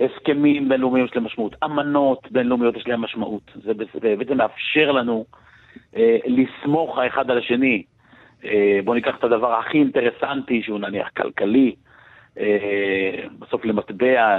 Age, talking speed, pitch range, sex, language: 40-59, 115 wpm, 110-150 Hz, male, English